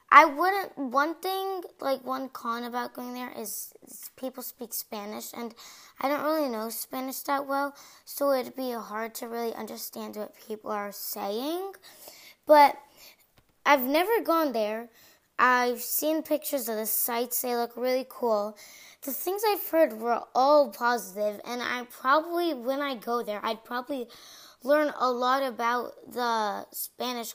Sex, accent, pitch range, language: female, American, 235-300 Hz, English